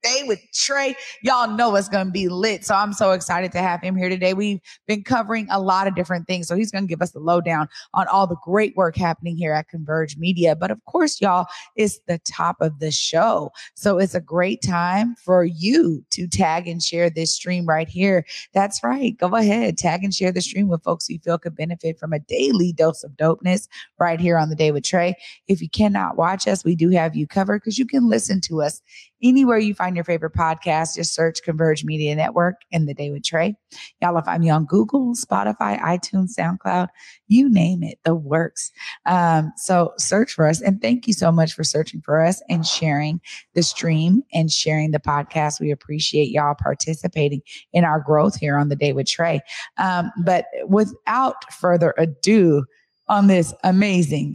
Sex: female